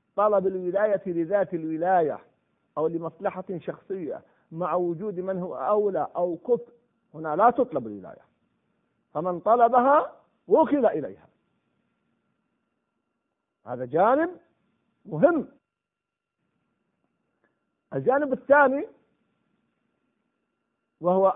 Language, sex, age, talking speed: Arabic, male, 50-69, 80 wpm